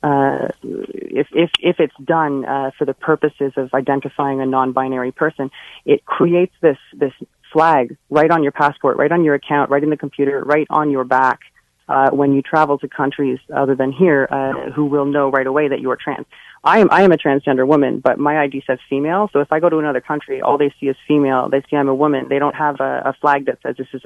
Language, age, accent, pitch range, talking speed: English, 30-49, American, 130-150 Hz, 235 wpm